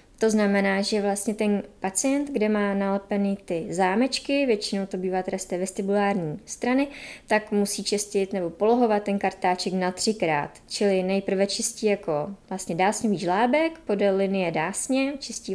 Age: 20-39